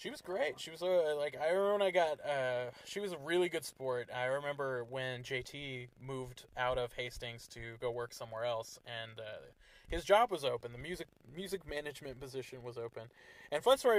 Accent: American